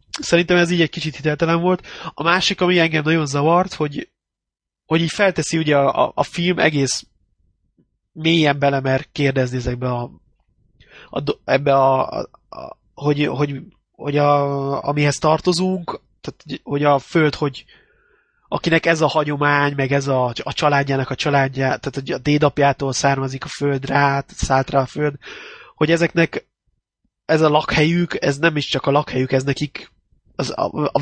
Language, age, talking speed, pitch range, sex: Hungarian, 20-39, 160 wpm, 135-160 Hz, male